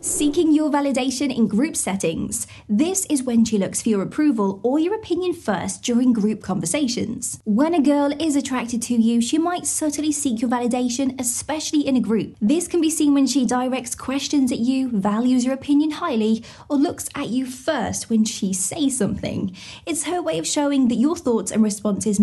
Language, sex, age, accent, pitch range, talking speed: English, female, 20-39, British, 225-295 Hz, 190 wpm